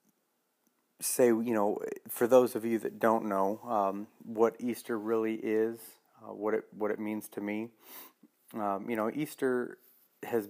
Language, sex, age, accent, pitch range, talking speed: English, male, 40-59, American, 105-115 Hz, 160 wpm